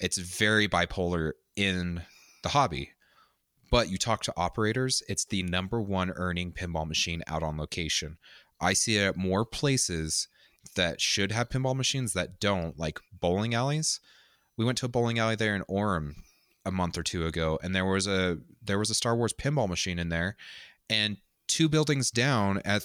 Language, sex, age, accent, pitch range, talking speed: English, male, 30-49, American, 90-115 Hz, 180 wpm